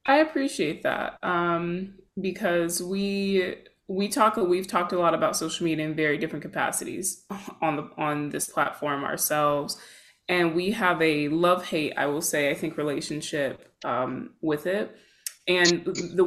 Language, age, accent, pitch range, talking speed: English, 20-39, American, 150-180 Hz, 155 wpm